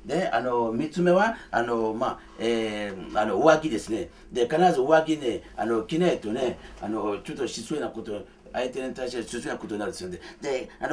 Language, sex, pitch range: Japanese, male, 130-205 Hz